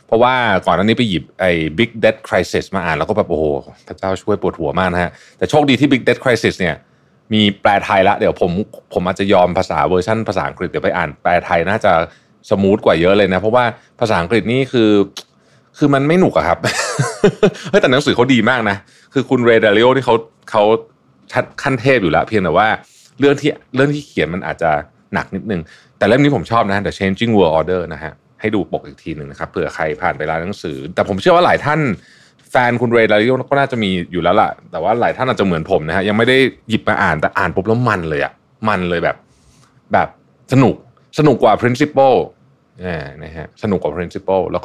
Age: 30-49